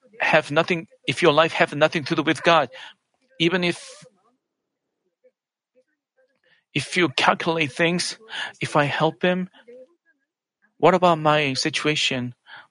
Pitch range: 145-235 Hz